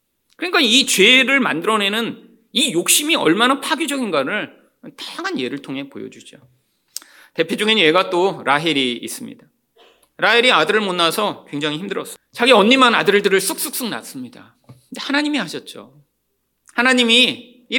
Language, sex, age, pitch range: Korean, male, 40-59, 210-295 Hz